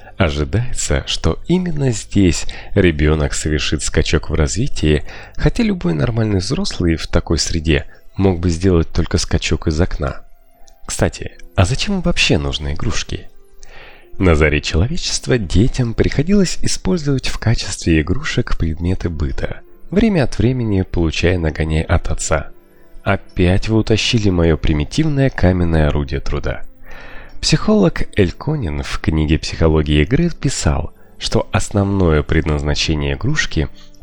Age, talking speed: 30-49, 120 wpm